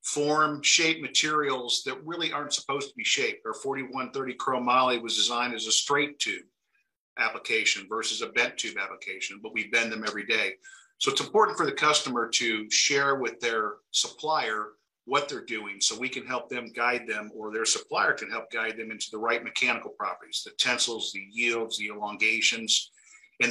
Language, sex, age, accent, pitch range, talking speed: English, male, 50-69, American, 115-160 Hz, 180 wpm